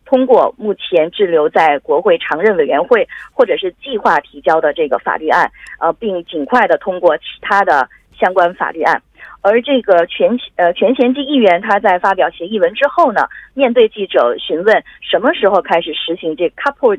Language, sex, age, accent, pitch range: Korean, female, 20-39, Chinese, 175-275 Hz